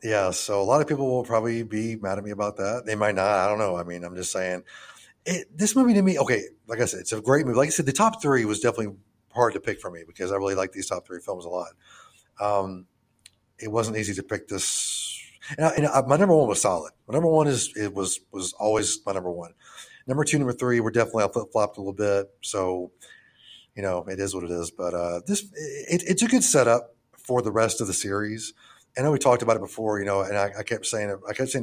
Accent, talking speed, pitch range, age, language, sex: American, 265 wpm, 100-130 Hz, 30-49, English, male